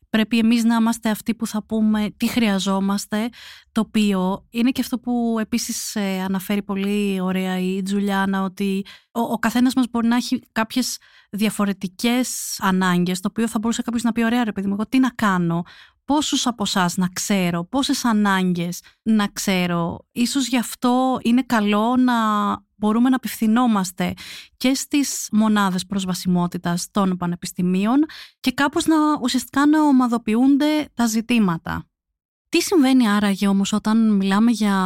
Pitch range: 195-235 Hz